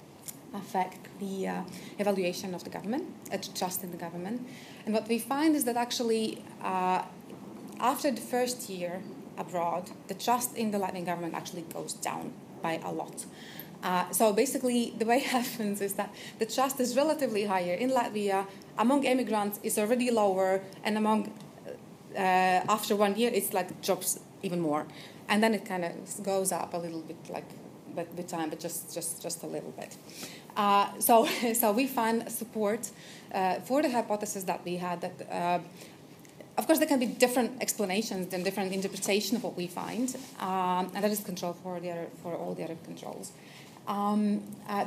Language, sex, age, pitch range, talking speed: English, female, 30-49, 185-230 Hz, 180 wpm